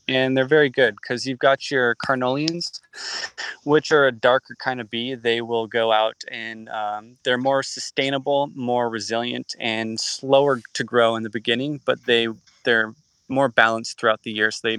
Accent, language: American, English